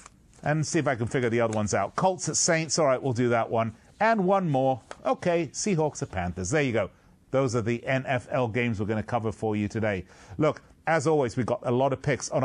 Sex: male